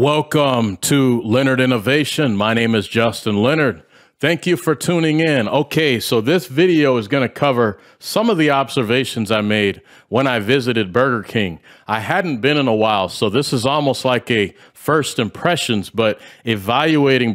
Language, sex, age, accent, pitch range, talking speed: English, male, 40-59, American, 115-145 Hz, 170 wpm